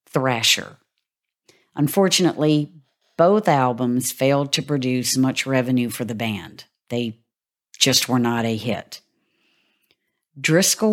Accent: American